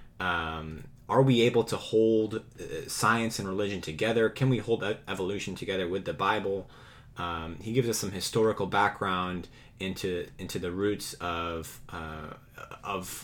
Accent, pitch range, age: American, 85-120 Hz, 30-49